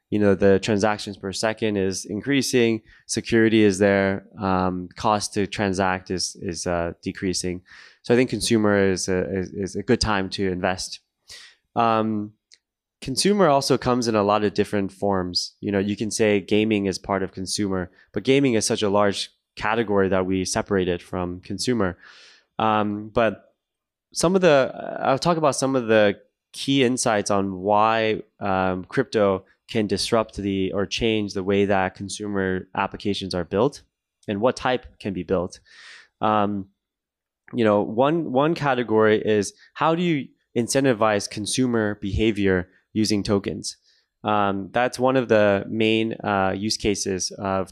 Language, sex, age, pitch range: Japanese, male, 20-39, 95-115 Hz